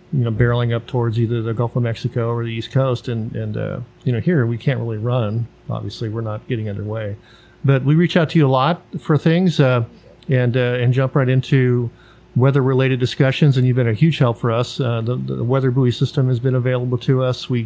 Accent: American